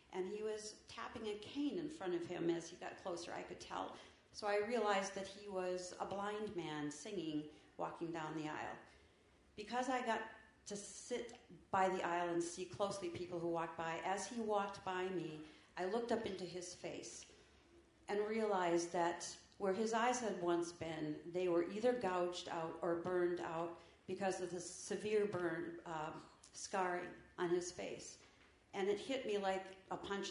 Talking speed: 180 wpm